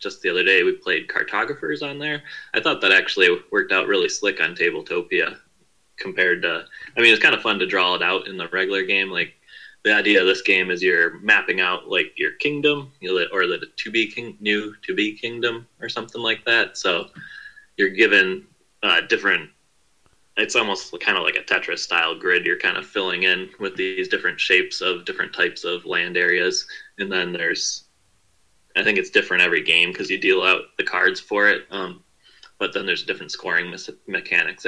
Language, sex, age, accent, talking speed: English, male, 20-39, American, 195 wpm